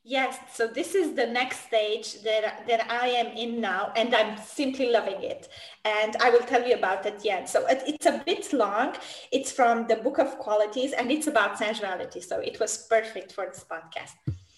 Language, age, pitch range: English, 20-39, 220-275 Hz